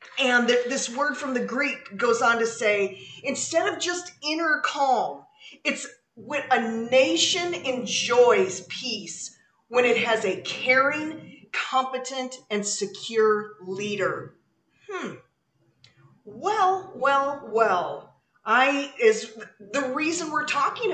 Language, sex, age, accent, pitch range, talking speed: English, female, 40-59, American, 215-280 Hz, 115 wpm